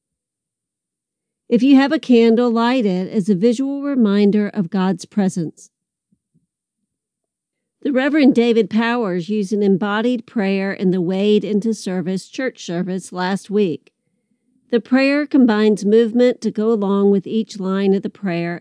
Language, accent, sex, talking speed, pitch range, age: English, American, female, 140 wpm, 195-230 Hz, 50-69